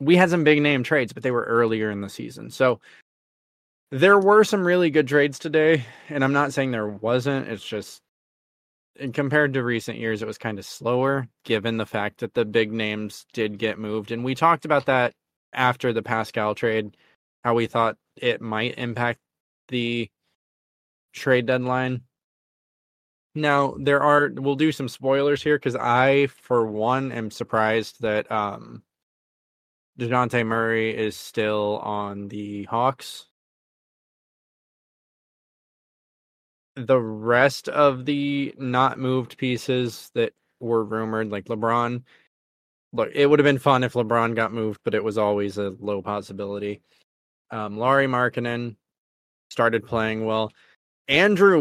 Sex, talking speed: male, 145 wpm